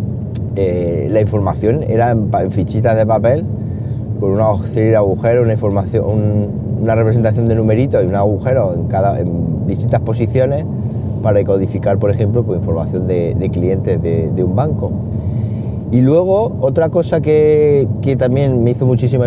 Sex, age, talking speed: male, 30-49, 155 wpm